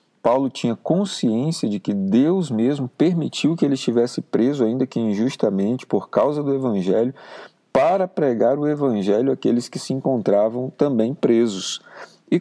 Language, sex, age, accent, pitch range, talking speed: Portuguese, male, 40-59, Brazilian, 105-140 Hz, 145 wpm